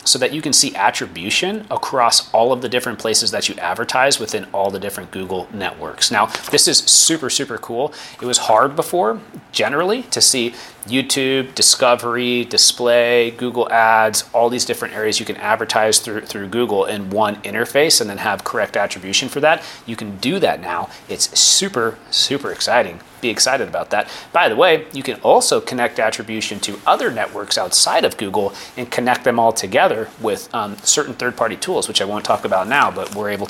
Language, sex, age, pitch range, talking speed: English, male, 30-49, 110-155 Hz, 190 wpm